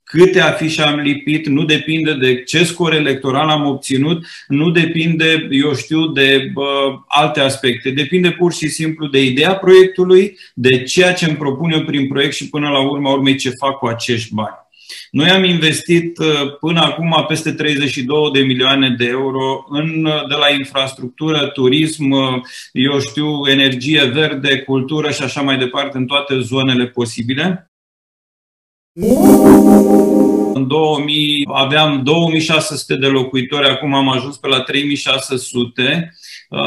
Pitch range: 130-155 Hz